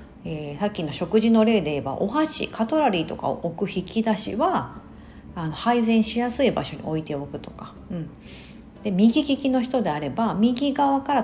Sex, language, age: female, Japanese, 40-59